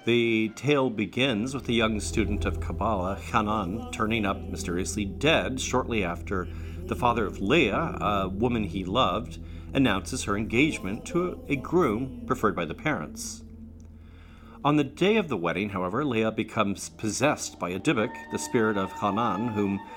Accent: American